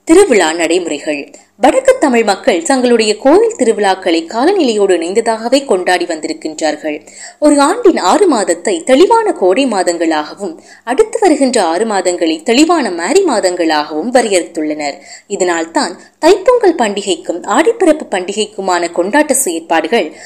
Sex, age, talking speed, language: female, 20-39, 100 wpm, Tamil